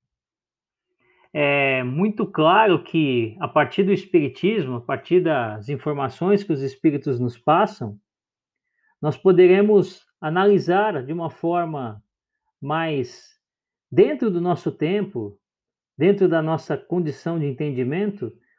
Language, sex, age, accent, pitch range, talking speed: Portuguese, male, 50-69, Brazilian, 150-200 Hz, 110 wpm